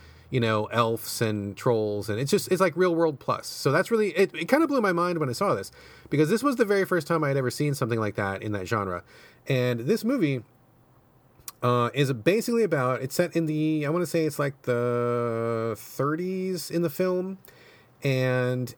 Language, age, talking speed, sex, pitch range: English, 30-49, 210 wpm, male, 115-160 Hz